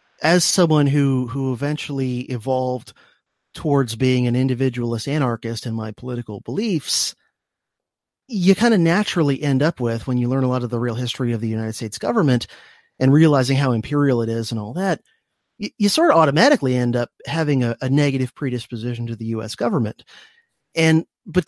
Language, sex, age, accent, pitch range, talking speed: English, male, 30-49, American, 125-175 Hz, 175 wpm